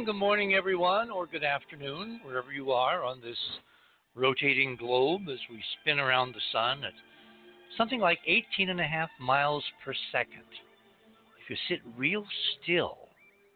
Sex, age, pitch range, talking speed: male, 60-79, 115-170 Hz, 150 wpm